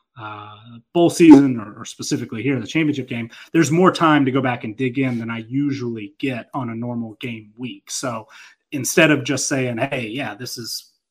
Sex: male